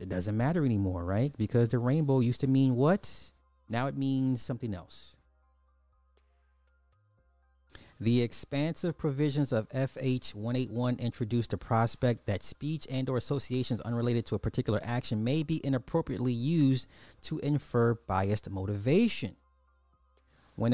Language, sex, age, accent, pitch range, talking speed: English, male, 30-49, American, 105-130 Hz, 130 wpm